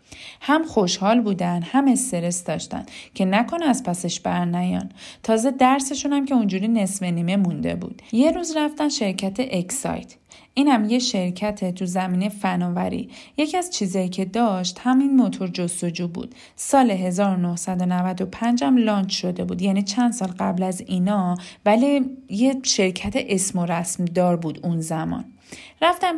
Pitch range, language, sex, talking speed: 185-245 Hz, Persian, female, 145 wpm